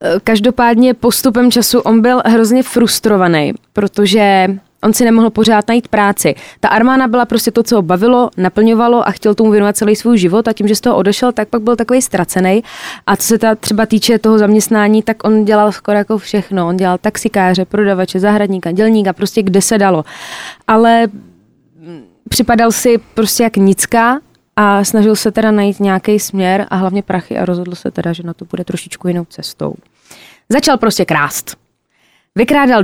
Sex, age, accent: female, 20-39, native